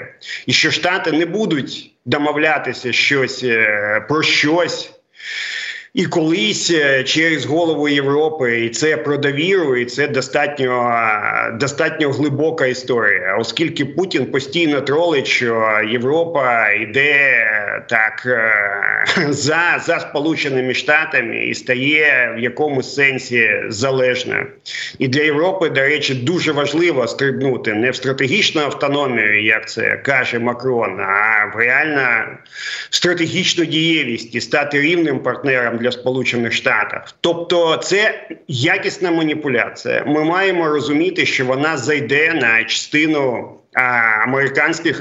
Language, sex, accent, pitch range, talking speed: Ukrainian, male, native, 130-160 Hz, 110 wpm